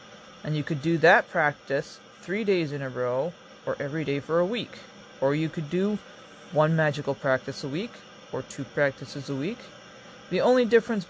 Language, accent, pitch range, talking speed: English, American, 150-200 Hz, 185 wpm